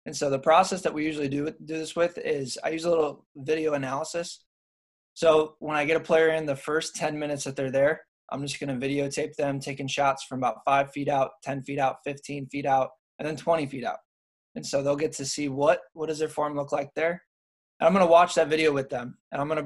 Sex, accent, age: male, American, 20-39